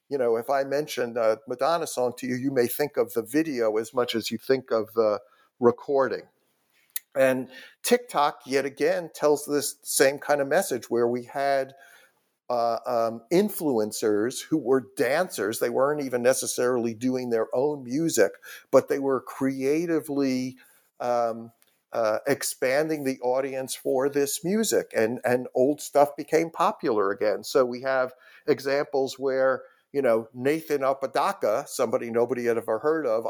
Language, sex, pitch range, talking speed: English, male, 125-155 Hz, 150 wpm